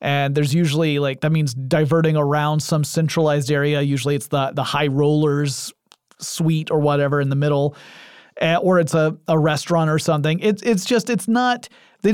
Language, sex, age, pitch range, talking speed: English, male, 30-49, 140-175 Hz, 180 wpm